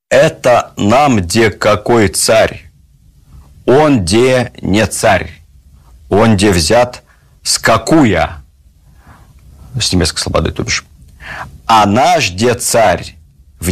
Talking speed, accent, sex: 105 wpm, native, male